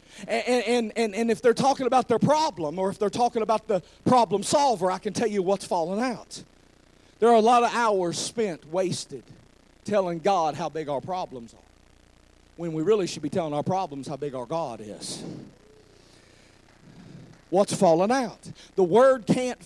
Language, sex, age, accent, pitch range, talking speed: English, male, 40-59, American, 190-280 Hz, 180 wpm